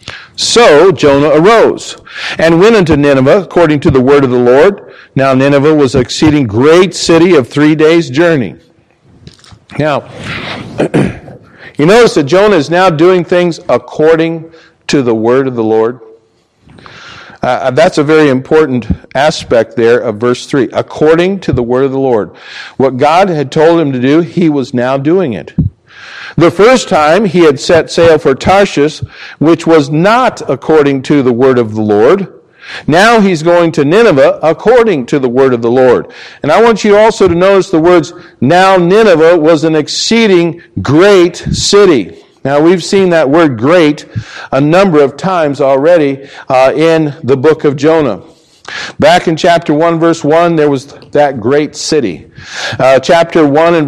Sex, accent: male, American